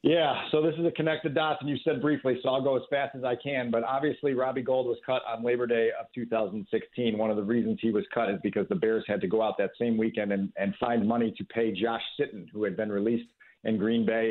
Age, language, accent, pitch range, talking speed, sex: 50-69, English, American, 125-150 Hz, 265 wpm, male